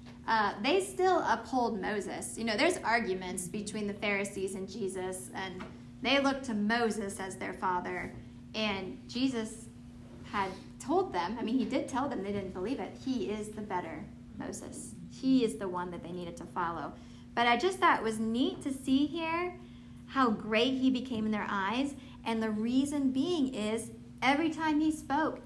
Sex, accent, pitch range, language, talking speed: female, American, 195-260 Hz, English, 180 wpm